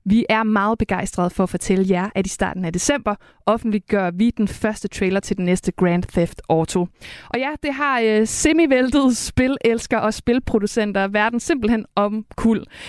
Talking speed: 170 wpm